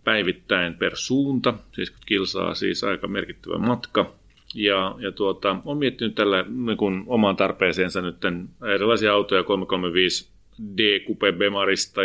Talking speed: 115 wpm